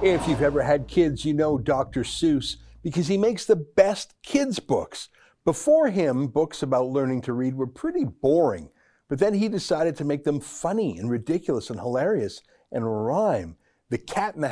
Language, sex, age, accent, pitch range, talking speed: English, male, 60-79, American, 135-170 Hz, 180 wpm